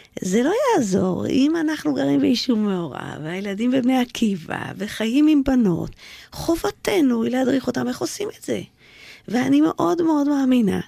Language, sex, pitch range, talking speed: Hebrew, female, 205-300 Hz, 145 wpm